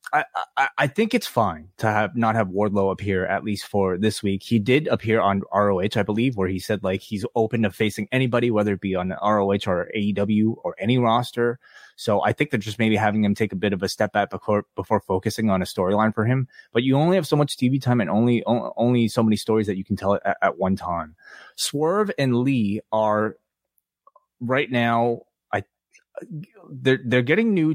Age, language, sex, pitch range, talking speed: 20-39, English, male, 100-130 Hz, 215 wpm